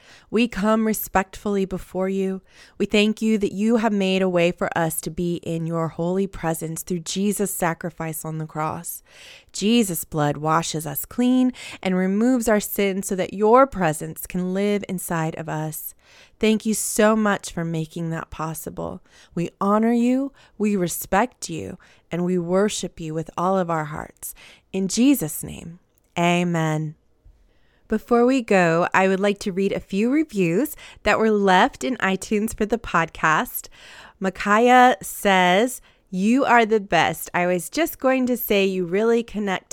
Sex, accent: female, American